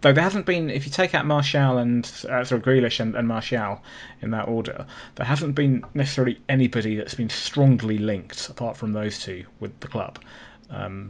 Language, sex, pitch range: English, male, 105-130 Hz